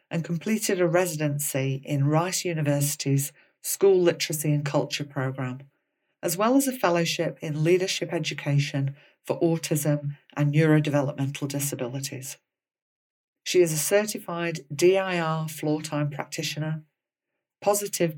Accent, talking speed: British, 110 wpm